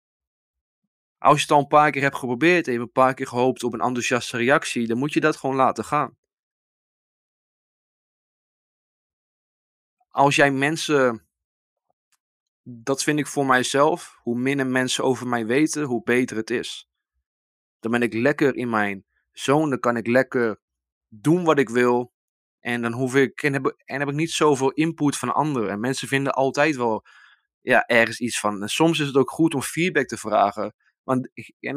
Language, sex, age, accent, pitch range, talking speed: Dutch, male, 20-39, Dutch, 115-140 Hz, 175 wpm